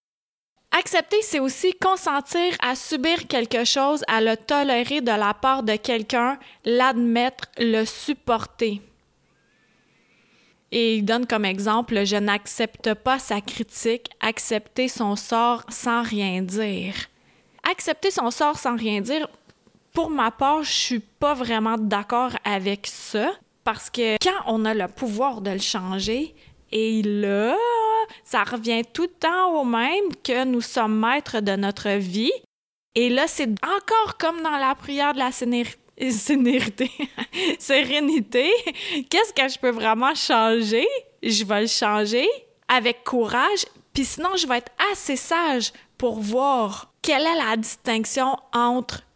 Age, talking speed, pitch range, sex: 20-39, 145 wpm, 225-295 Hz, female